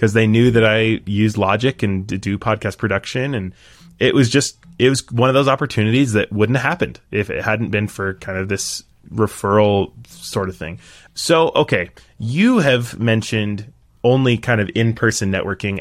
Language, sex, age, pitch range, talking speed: English, male, 20-39, 100-120 Hz, 180 wpm